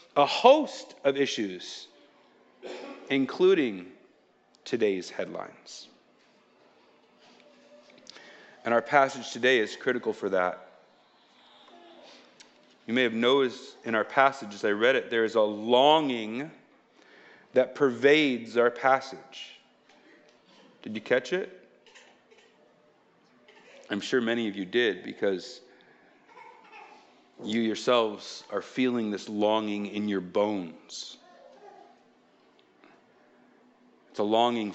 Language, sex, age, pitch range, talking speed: English, male, 40-59, 110-160 Hz, 95 wpm